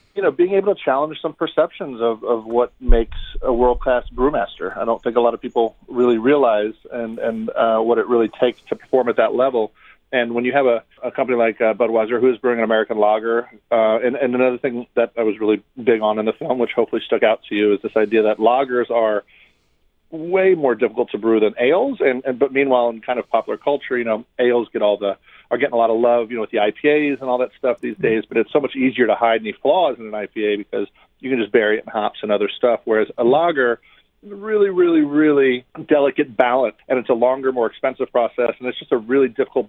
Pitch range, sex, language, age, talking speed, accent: 115-140 Hz, male, English, 40-59, 250 wpm, American